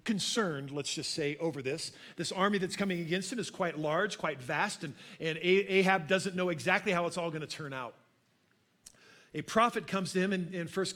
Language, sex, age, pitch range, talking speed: English, male, 50-69, 155-200 Hz, 210 wpm